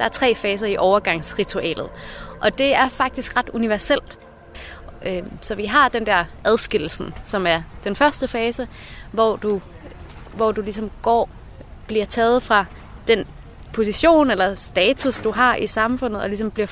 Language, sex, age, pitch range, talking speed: Danish, female, 20-39, 200-240 Hz, 155 wpm